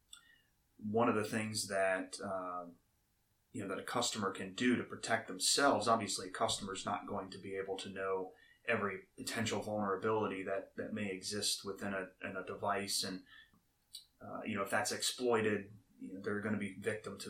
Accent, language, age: American, English, 30-49